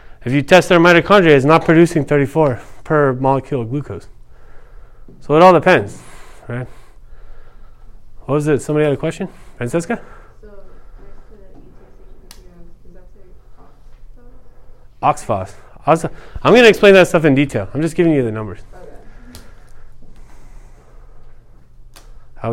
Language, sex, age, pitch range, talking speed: English, male, 30-49, 140-210 Hz, 110 wpm